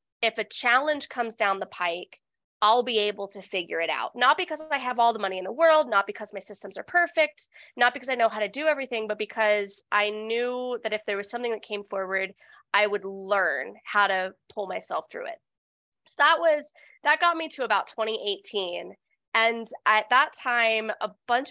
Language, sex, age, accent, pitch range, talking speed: English, female, 20-39, American, 200-245 Hz, 205 wpm